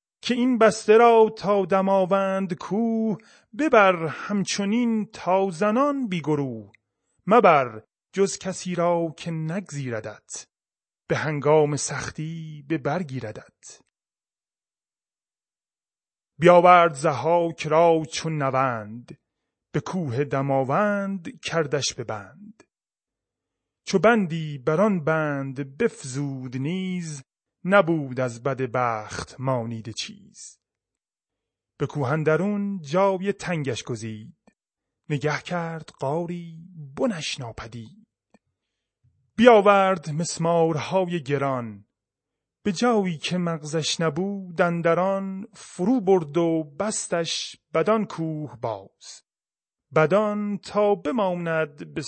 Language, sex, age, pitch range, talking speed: Persian, male, 30-49, 140-195 Hz, 85 wpm